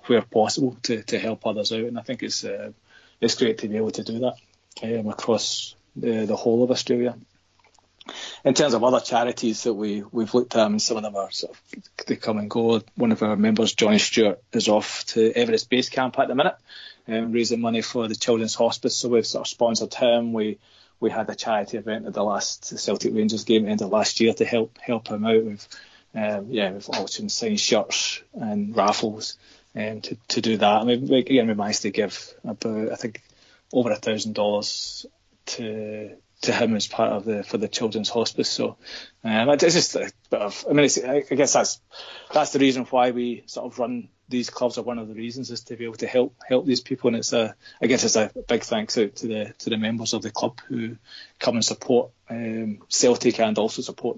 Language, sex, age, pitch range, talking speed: English, male, 20-39, 110-125 Hz, 230 wpm